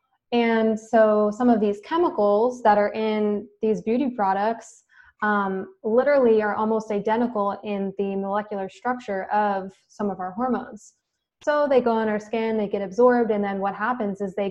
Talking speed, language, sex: 170 wpm, English, female